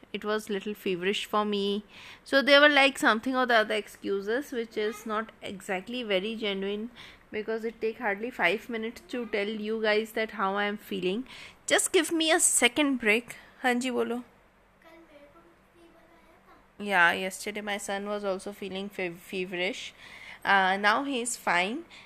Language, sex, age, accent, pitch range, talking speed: Hindi, female, 20-39, native, 205-245 Hz, 170 wpm